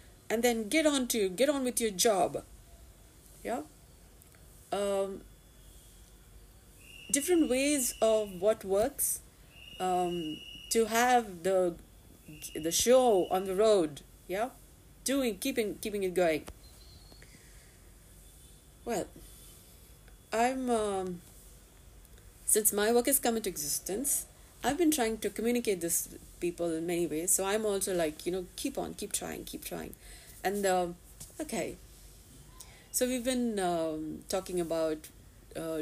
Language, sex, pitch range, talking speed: English, female, 170-235 Hz, 125 wpm